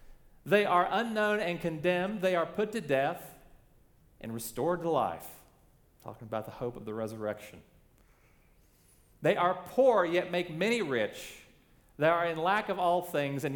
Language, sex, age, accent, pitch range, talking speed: English, male, 40-59, American, 130-180 Hz, 160 wpm